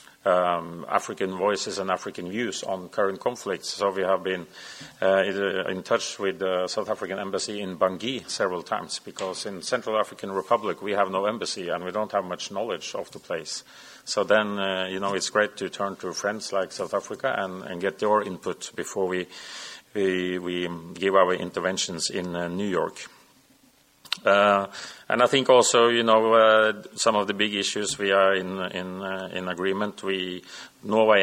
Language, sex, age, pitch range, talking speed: English, male, 40-59, 95-110 Hz, 185 wpm